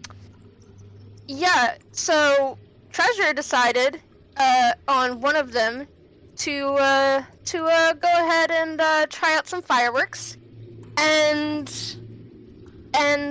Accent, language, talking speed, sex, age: American, English, 105 wpm, female, 10-29